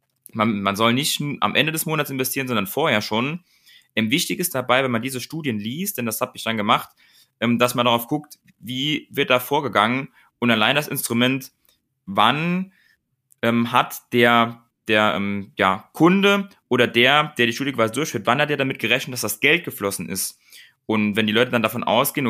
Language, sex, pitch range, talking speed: German, male, 110-135 Hz, 195 wpm